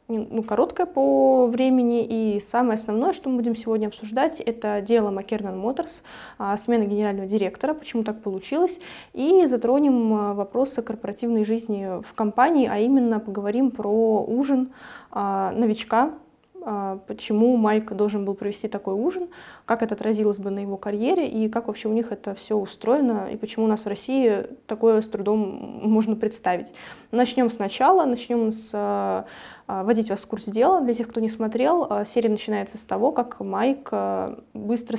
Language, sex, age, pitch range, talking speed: Russian, female, 20-39, 210-245 Hz, 155 wpm